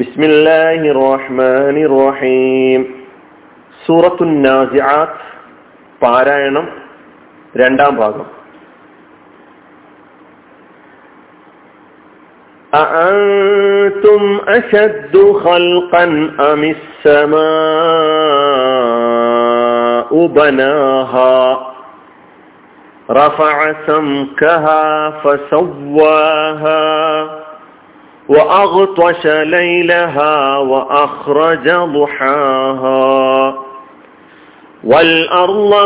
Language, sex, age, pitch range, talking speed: Malayalam, male, 40-59, 135-175 Hz, 40 wpm